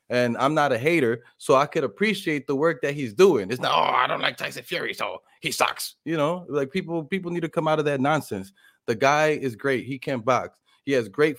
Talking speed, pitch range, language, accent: 250 wpm, 120-150 Hz, English, American